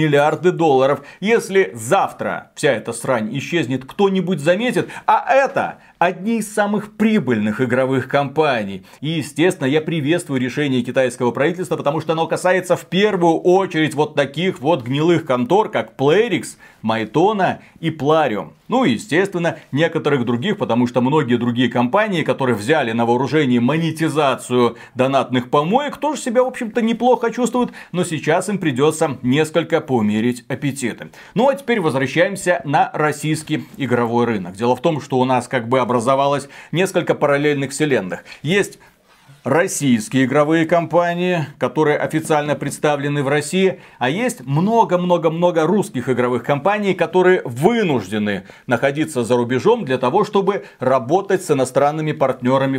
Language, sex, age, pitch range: Russian, male, 30-49, 130-180 Hz